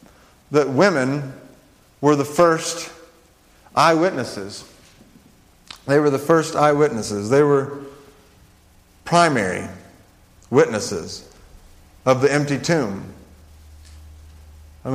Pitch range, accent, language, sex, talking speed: 115-155 Hz, American, English, male, 80 wpm